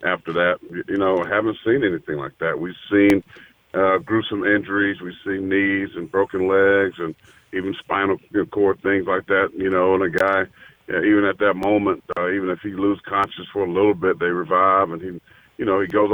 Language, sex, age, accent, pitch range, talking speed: English, male, 40-59, American, 95-105 Hz, 210 wpm